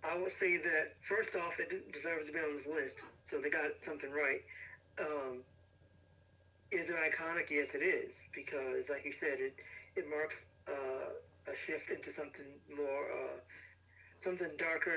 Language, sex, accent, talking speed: English, male, American, 165 wpm